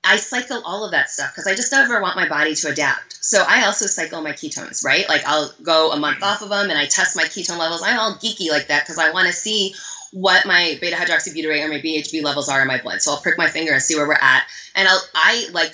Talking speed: 275 wpm